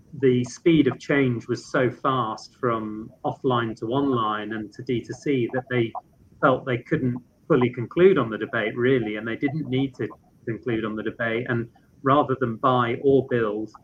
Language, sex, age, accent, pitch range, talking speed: English, male, 30-49, British, 115-130 Hz, 175 wpm